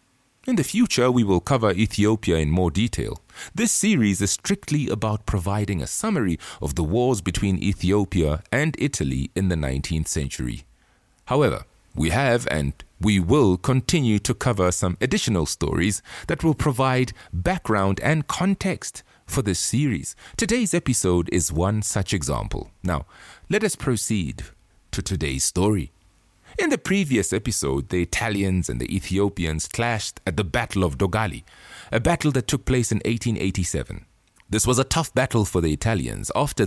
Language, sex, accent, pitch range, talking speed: English, male, Nigerian, 90-130 Hz, 155 wpm